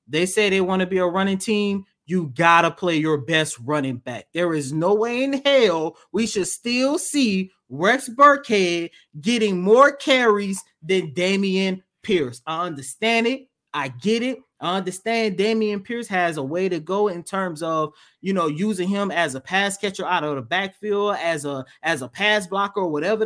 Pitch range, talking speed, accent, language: 185-250 Hz, 190 wpm, American, English